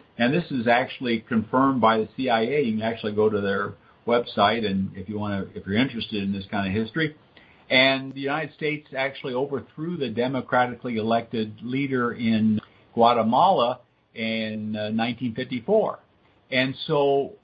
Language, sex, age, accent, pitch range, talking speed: English, male, 60-79, American, 110-135 Hz, 150 wpm